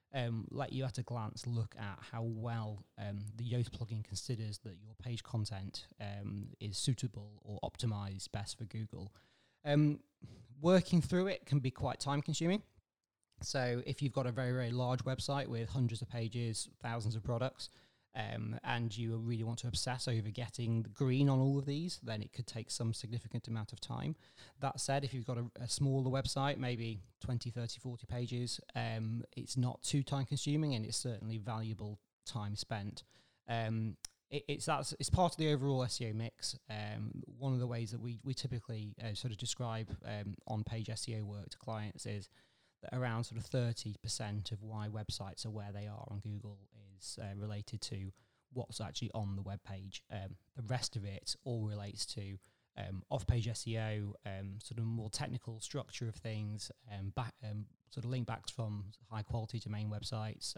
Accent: British